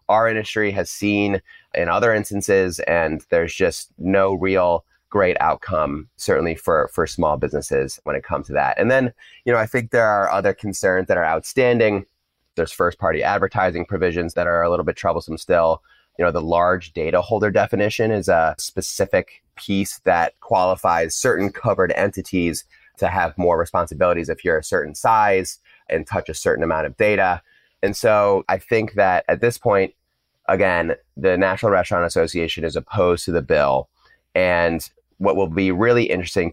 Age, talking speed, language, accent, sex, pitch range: 30-49, 170 wpm, English, American, male, 85-105 Hz